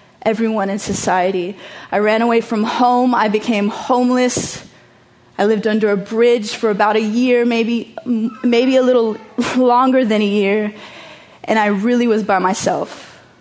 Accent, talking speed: American, 155 wpm